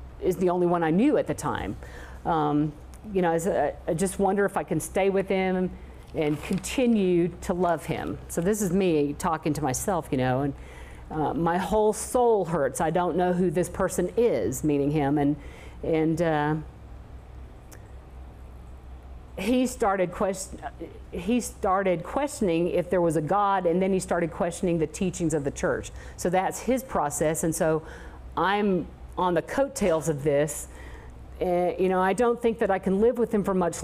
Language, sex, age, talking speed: German, female, 50-69, 185 wpm